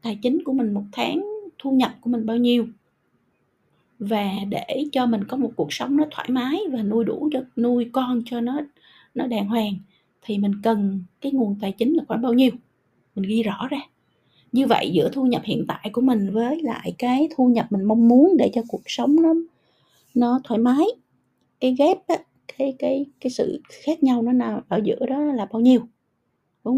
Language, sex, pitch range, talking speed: Vietnamese, female, 200-250 Hz, 200 wpm